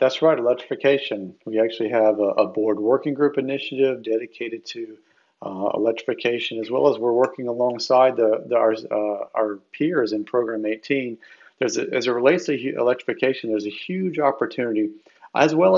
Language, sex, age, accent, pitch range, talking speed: English, male, 40-59, American, 110-140 Hz, 165 wpm